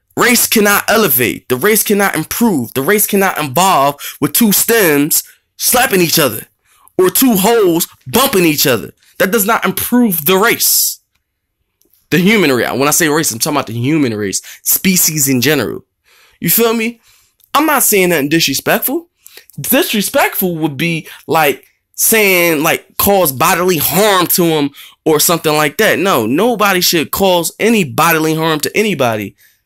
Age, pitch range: 20-39, 155-225 Hz